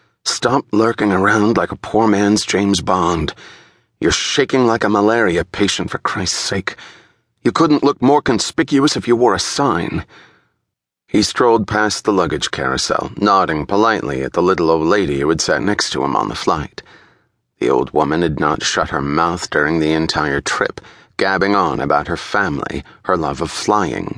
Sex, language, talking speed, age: male, English, 175 wpm, 30-49